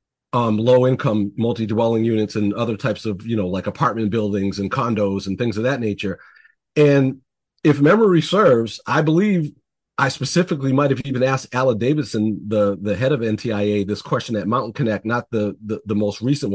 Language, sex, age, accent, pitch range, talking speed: English, male, 40-59, American, 110-140 Hz, 180 wpm